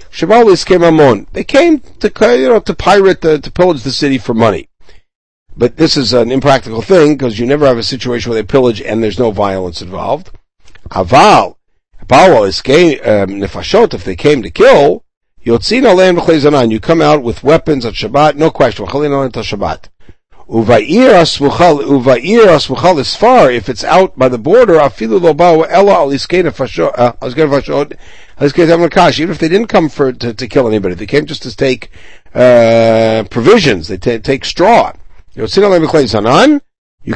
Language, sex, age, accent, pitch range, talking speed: English, male, 60-79, American, 115-160 Hz, 130 wpm